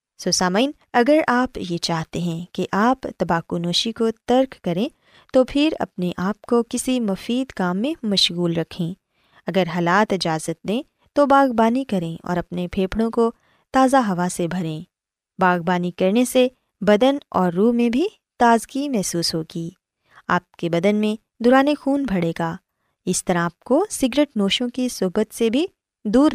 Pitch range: 175-255 Hz